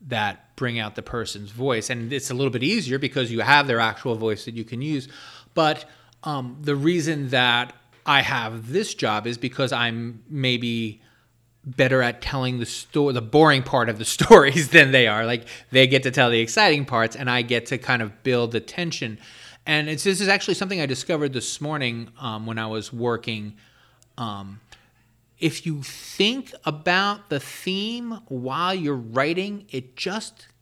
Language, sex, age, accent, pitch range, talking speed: English, male, 30-49, American, 115-150 Hz, 180 wpm